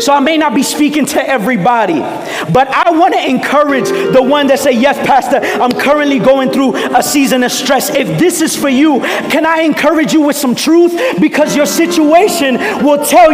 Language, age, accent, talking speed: English, 40-59, American, 200 wpm